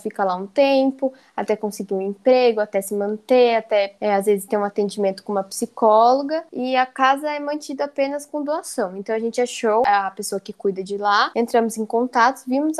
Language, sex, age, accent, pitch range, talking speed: Portuguese, female, 10-29, Brazilian, 210-265 Hz, 195 wpm